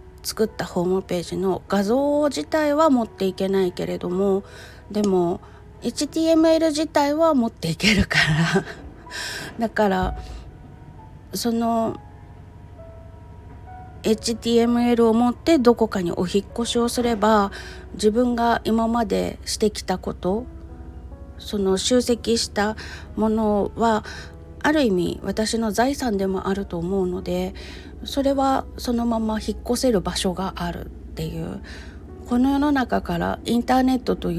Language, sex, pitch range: Japanese, female, 180-230 Hz